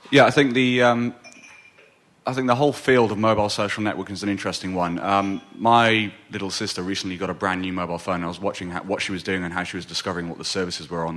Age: 30-49